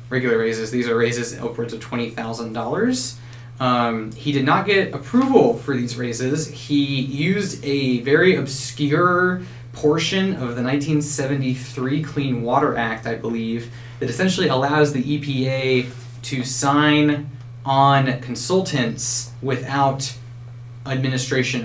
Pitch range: 120-140 Hz